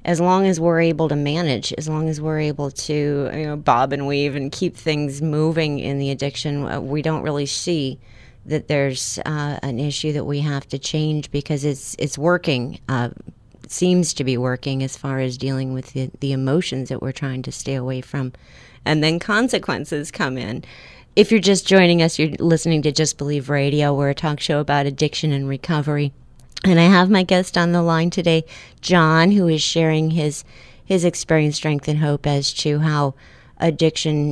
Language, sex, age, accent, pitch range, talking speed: English, female, 30-49, American, 140-170 Hz, 195 wpm